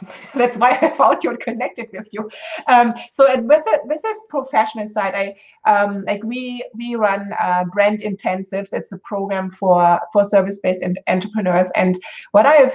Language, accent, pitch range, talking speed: English, German, 190-240 Hz, 170 wpm